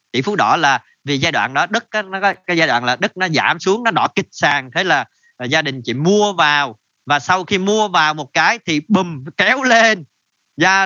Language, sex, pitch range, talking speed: Vietnamese, male, 135-190 Hz, 225 wpm